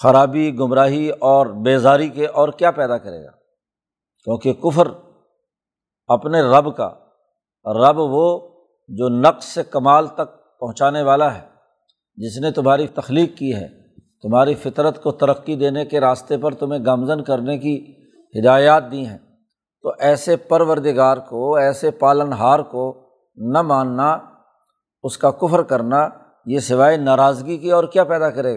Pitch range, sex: 130-155 Hz, male